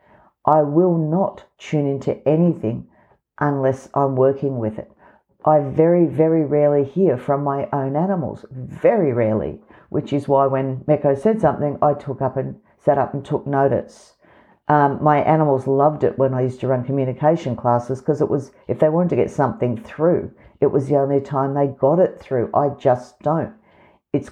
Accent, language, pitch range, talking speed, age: Australian, English, 130-165 Hz, 180 wpm, 50-69